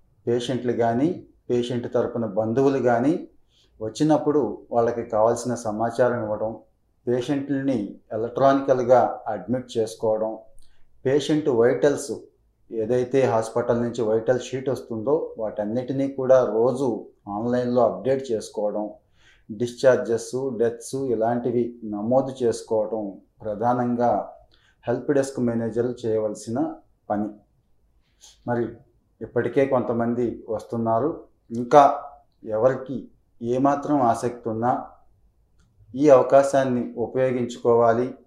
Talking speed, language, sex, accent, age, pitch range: 80 wpm, Telugu, male, native, 30-49, 115-130 Hz